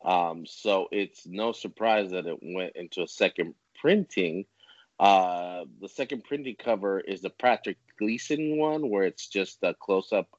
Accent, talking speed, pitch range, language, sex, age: American, 155 wpm, 90-110 Hz, English, male, 30-49